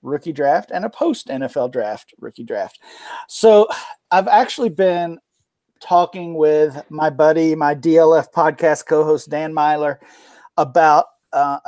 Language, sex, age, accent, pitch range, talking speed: English, male, 40-59, American, 145-175 Hz, 130 wpm